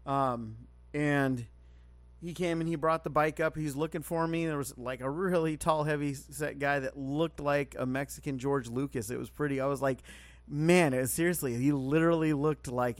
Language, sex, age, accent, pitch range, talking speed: English, male, 30-49, American, 120-145 Hz, 205 wpm